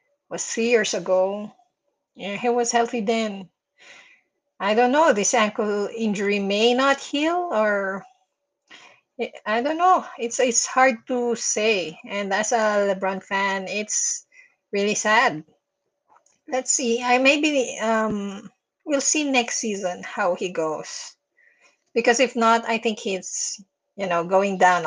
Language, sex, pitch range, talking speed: English, female, 185-250 Hz, 135 wpm